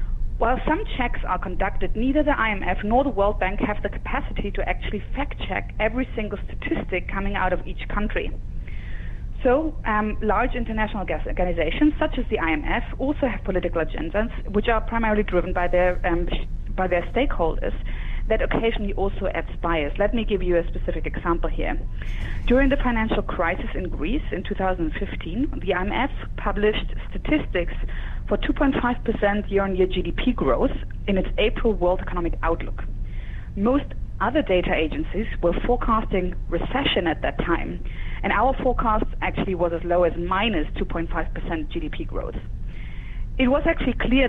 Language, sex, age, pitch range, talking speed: English, female, 30-49, 175-230 Hz, 150 wpm